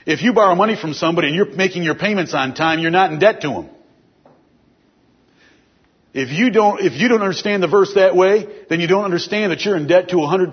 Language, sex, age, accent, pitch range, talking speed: English, male, 50-69, American, 175-215 Hz, 235 wpm